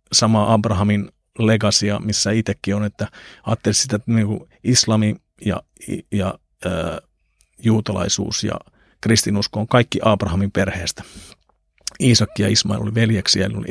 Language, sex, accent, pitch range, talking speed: Finnish, male, native, 100-110 Hz, 125 wpm